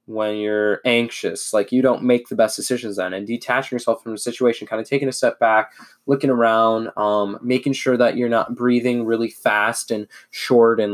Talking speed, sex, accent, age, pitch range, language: 205 wpm, male, American, 20-39, 105-120 Hz, English